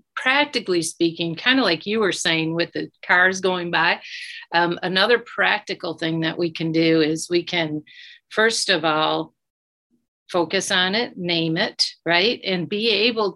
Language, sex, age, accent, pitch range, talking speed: English, female, 50-69, American, 165-195 Hz, 160 wpm